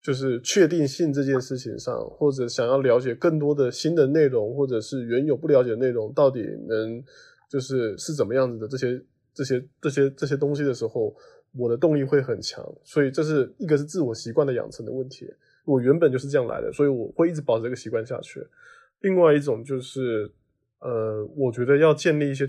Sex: male